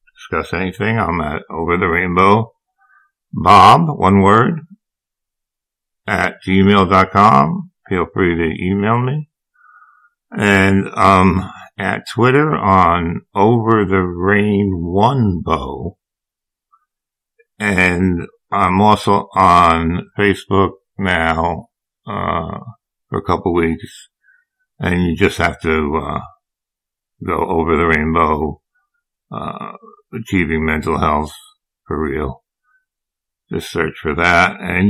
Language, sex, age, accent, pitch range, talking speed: English, male, 60-79, American, 85-115 Hz, 100 wpm